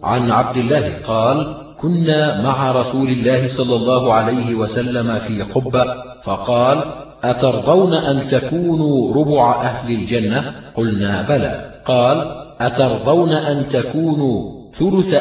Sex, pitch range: male, 125-150 Hz